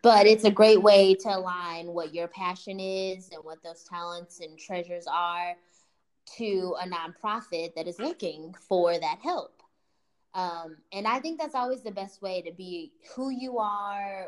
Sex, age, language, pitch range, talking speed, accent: female, 10-29, English, 170-205 Hz, 170 wpm, American